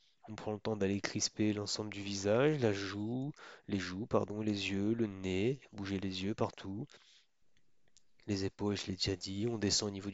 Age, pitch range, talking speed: 30-49, 100-115 Hz, 190 wpm